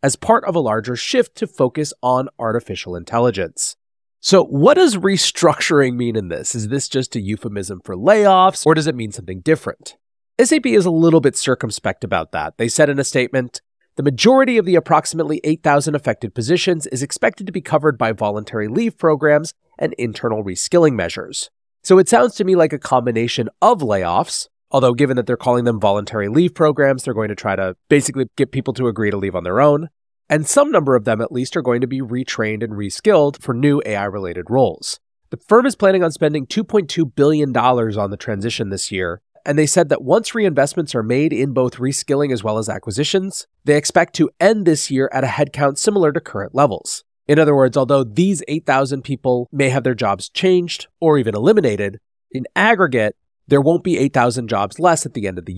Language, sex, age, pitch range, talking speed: English, male, 30-49, 115-160 Hz, 200 wpm